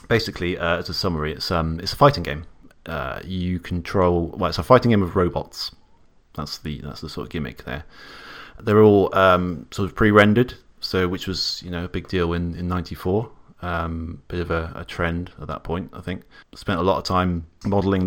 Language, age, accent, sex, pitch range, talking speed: English, 30-49, British, male, 80-95 Hz, 210 wpm